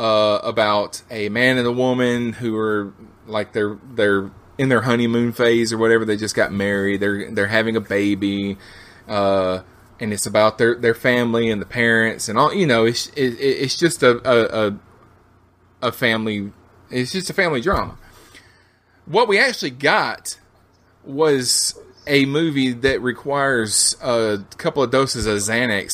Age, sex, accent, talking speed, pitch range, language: 20-39, male, American, 155 wpm, 100-130 Hz, English